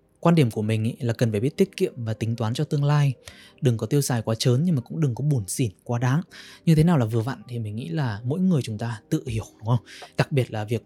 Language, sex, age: Vietnamese, male, 20-39